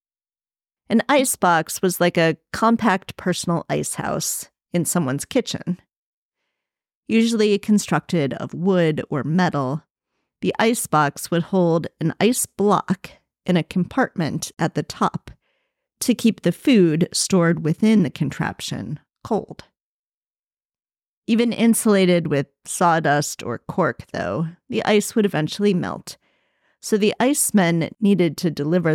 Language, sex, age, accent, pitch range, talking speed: English, female, 40-59, American, 155-200 Hz, 120 wpm